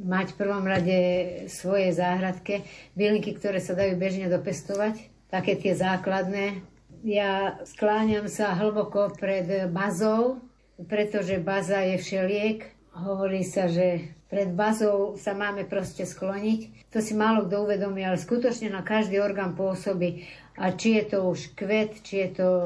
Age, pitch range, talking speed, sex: 60-79, 185-210 Hz, 145 wpm, female